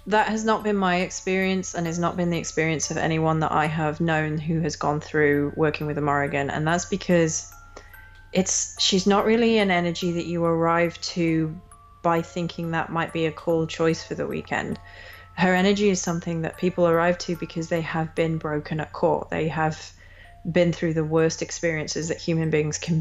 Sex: female